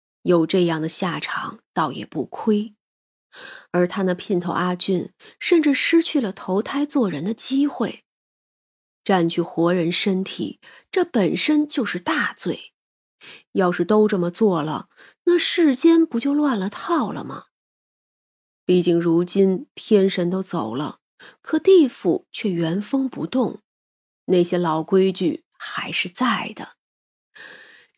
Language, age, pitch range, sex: Chinese, 30-49, 180-255 Hz, female